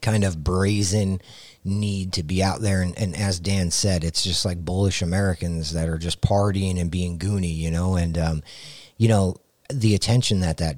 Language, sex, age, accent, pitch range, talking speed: English, male, 30-49, American, 85-110 Hz, 195 wpm